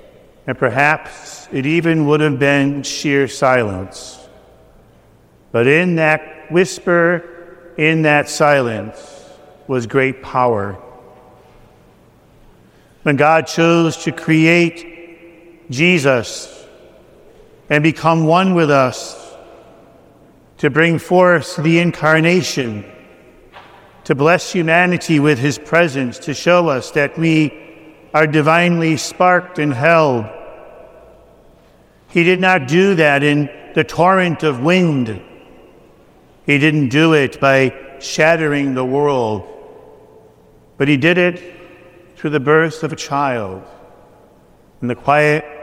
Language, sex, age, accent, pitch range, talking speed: English, male, 50-69, American, 145-175 Hz, 110 wpm